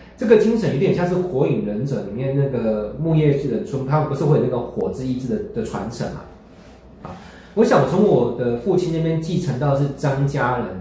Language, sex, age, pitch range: Chinese, male, 20-39, 130-180 Hz